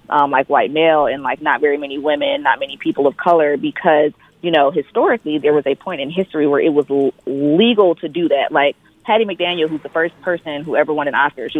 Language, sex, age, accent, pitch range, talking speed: English, female, 20-39, American, 150-185 Hz, 235 wpm